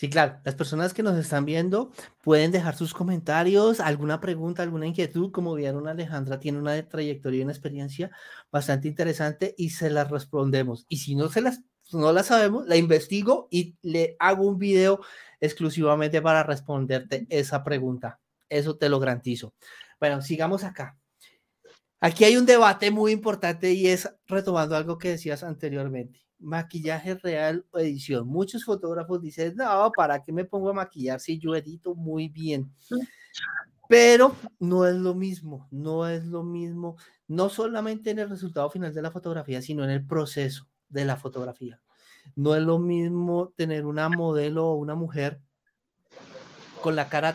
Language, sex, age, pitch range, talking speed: Spanish, male, 30-49, 145-180 Hz, 160 wpm